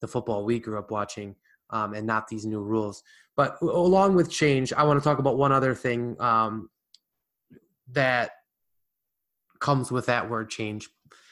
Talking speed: 165 wpm